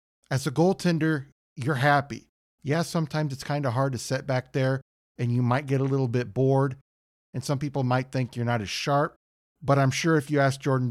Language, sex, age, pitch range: English, male, 50-69, 115-140 Hz